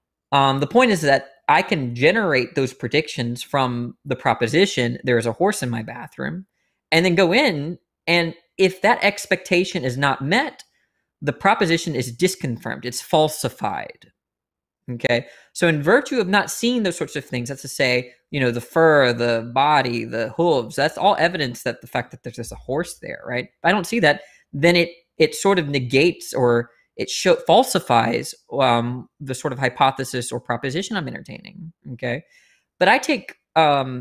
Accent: American